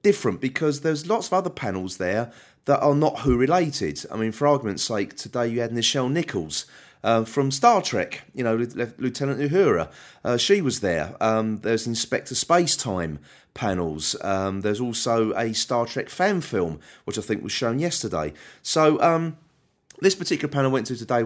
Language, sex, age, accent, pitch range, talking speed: English, male, 30-49, British, 110-145 Hz, 185 wpm